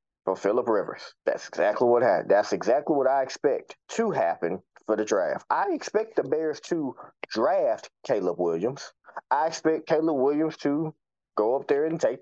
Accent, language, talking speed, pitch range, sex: American, English, 170 wpm, 105-140 Hz, male